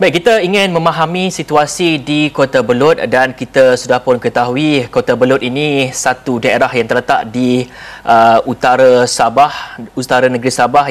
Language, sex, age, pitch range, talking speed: Malay, male, 30-49, 120-145 Hz, 150 wpm